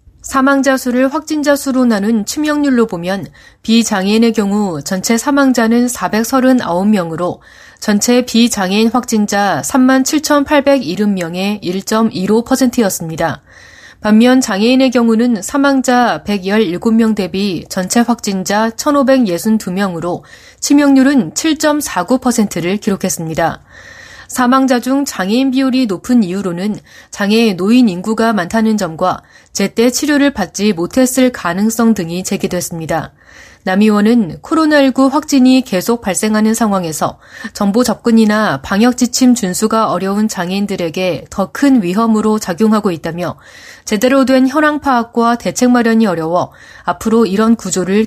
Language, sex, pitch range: Korean, female, 185-250 Hz